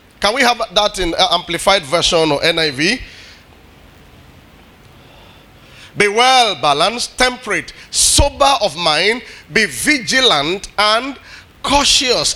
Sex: male